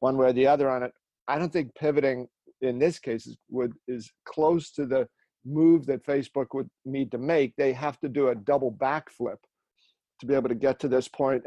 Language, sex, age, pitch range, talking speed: English, male, 50-69, 125-150 Hz, 215 wpm